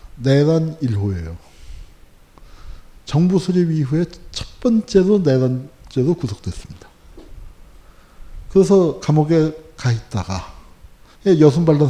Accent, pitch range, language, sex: native, 95-160 Hz, Korean, male